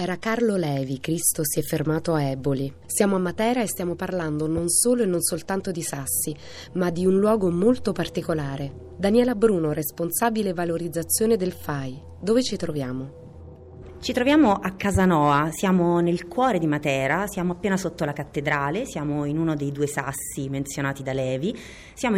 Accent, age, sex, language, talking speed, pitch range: native, 30-49, female, Italian, 165 wpm, 145-215 Hz